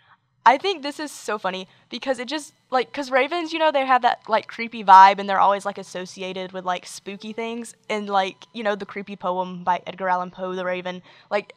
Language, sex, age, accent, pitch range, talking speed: English, female, 10-29, American, 190-250 Hz, 225 wpm